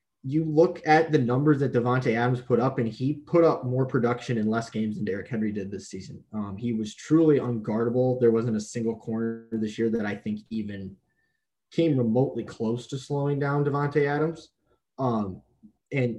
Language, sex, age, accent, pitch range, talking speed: English, male, 20-39, American, 105-125 Hz, 190 wpm